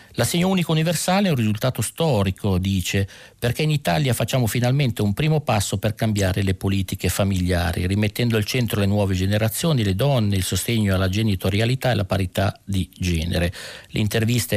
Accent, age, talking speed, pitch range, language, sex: native, 50-69, 165 wpm, 95-115 Hz, Italian, male